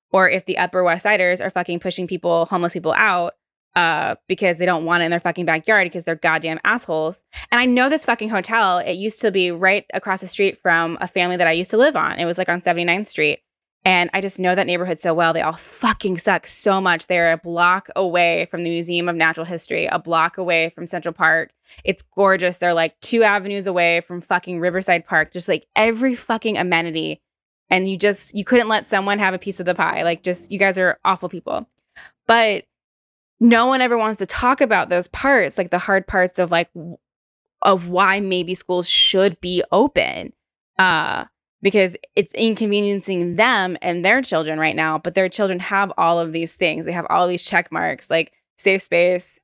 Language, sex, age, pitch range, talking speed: English, female, 10-29, 175-195 Hz, 210 wpm